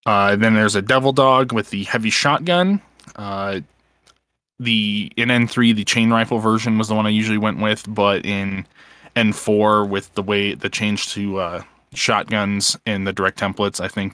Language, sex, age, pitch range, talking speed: English, male, 20-39, 100-115 Hz, 180 wpm